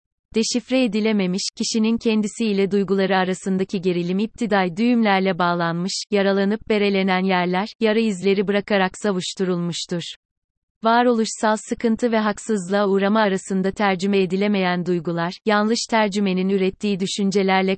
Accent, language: native, Turkish